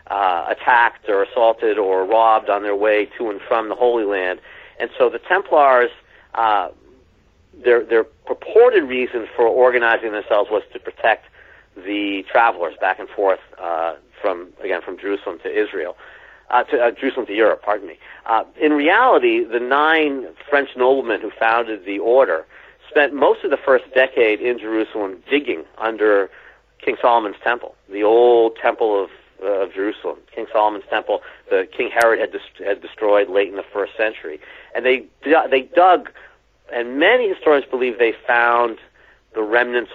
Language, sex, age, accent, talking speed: English, male, 50-69, American, 160 wpm